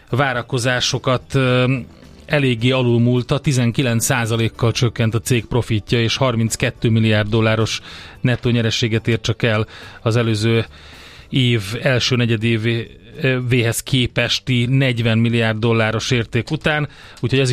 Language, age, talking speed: Hungarian, 30-49, 105 wpm